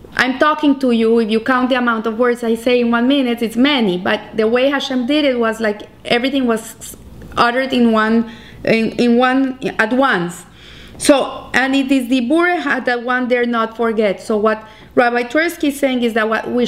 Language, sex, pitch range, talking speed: English, female, 230-275 Hz, 205 wpm